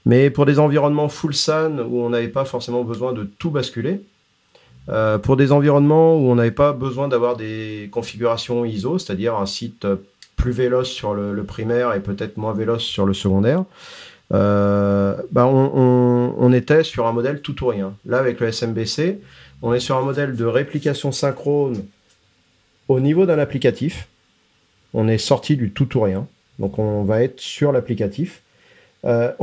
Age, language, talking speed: 40-59, French, 165 wpm